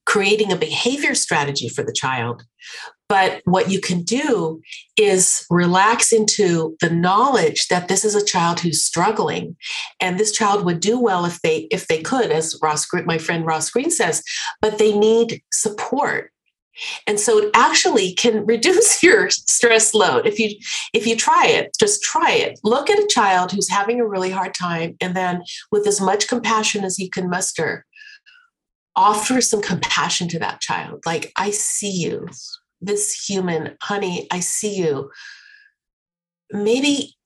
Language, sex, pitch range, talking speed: English, female, 175-225 Hz, 165 wpm